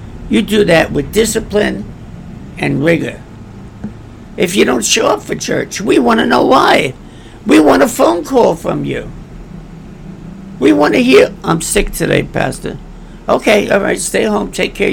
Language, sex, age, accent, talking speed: English, male, 60-79, American, 165 wpm